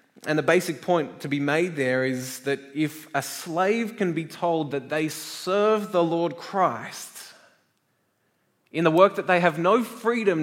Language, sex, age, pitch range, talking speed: English, male, 20-39, 140-165 Hz, 175 wpm